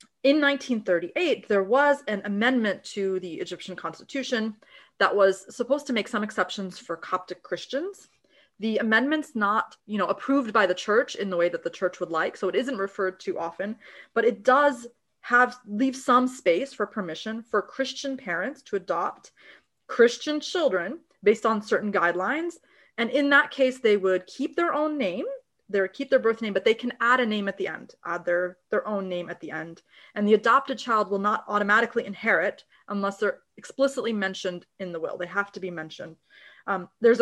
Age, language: 30-49, English